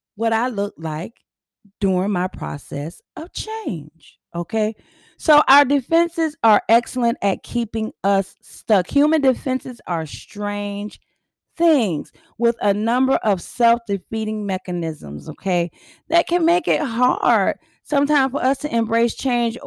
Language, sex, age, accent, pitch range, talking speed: English, female, 30-49, American, 200-275 Hz, 130 wpm